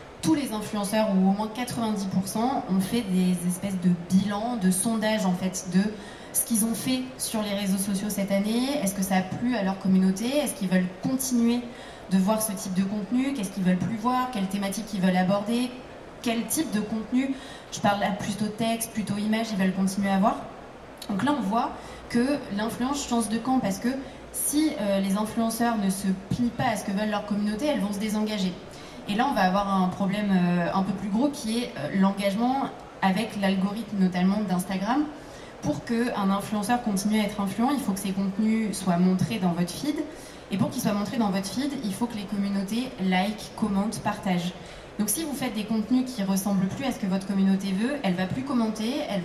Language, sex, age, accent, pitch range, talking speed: French, female, 20-39, French, 195-235 Hz, 210 wpm